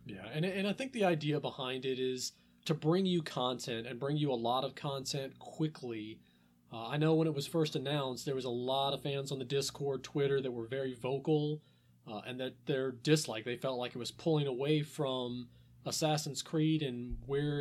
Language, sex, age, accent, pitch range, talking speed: English, male, 30-49, American, 130-155 Hz, 210 wpm